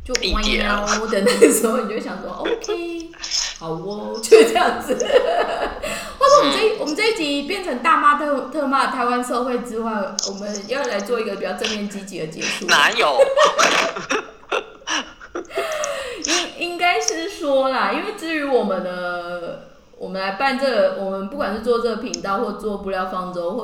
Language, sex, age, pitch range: Chinese, female, 20-39, 185-270 Hz